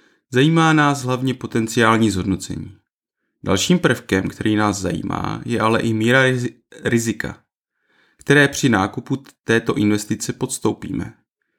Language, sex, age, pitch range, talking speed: Czech, male, 30-49, 105-130 Hz, 110 wpm